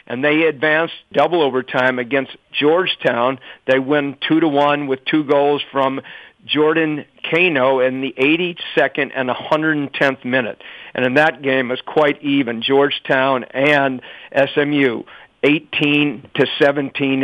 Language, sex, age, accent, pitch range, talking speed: English, male, 50-69, American, 135-150 Hz, 130 wpm